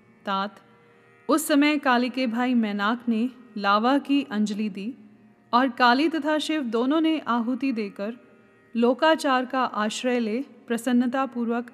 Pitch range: 215-265 Hz